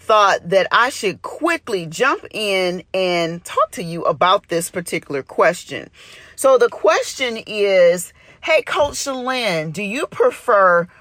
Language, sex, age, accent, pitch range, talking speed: English, female, 40-59, American, 185-280 Hz, 135 wpm